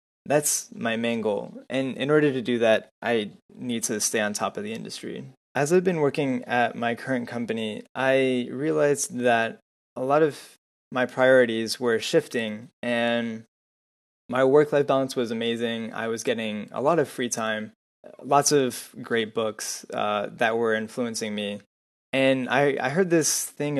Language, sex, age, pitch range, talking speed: English, male, 20-39, 110-130 Hz, 165 wpm